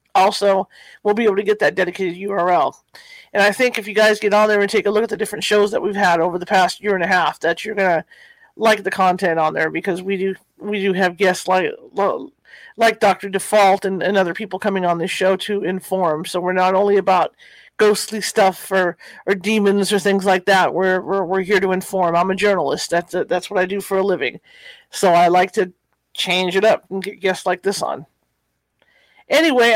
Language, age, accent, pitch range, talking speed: English, 40-59, American, 185-220 Hz, 225 wpm